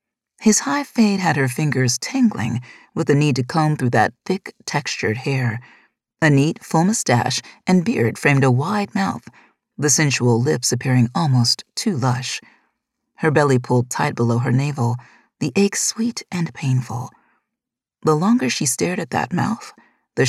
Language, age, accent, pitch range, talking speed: English, 40-59, American, 125-180 Hz, 160 wpm